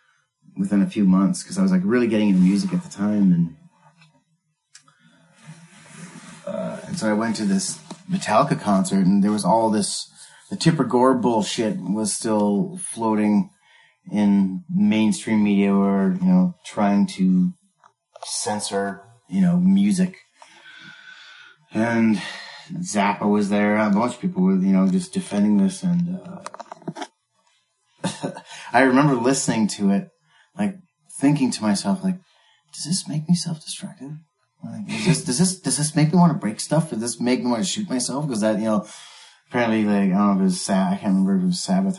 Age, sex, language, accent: 30-49, male, English, American